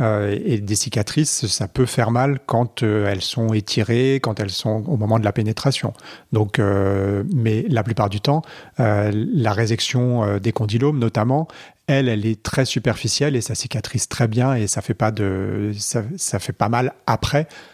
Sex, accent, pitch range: male, French, 105-130 Hz